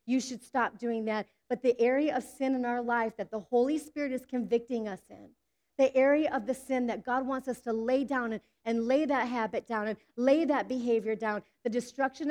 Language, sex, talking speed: English, female, 225 wpm